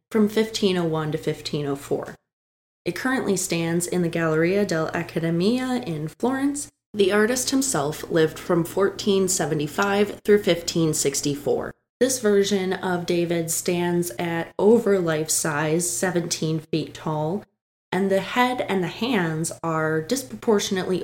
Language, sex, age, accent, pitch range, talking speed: English, female, 20-39, American, 160-200 Hz, 115 wpm